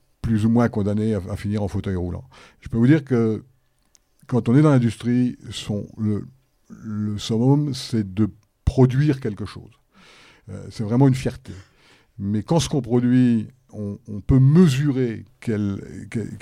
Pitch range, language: 105-135 Hz, French